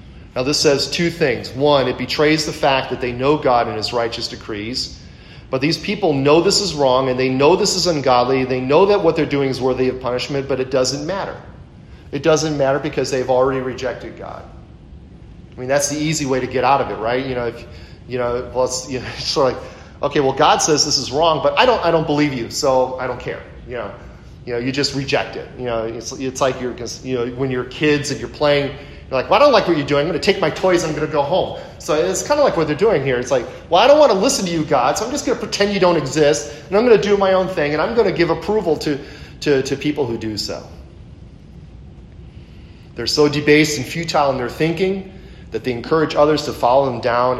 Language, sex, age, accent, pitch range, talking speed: English, male, 40-59, American, 120-155 Hz, 260 wpm